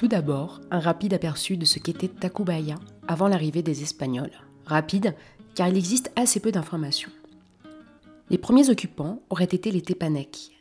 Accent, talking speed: French, 155 wpm